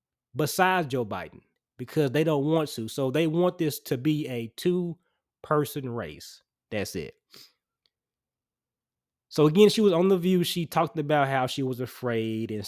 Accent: American